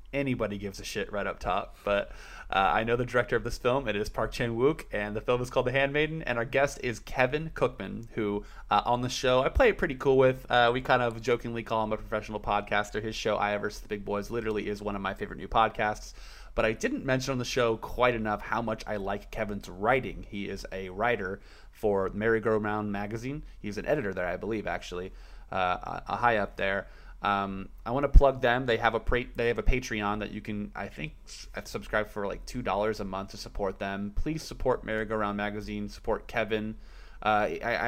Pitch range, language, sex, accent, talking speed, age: 100-120 Hz, English, male, American, 220 wpm, 20-39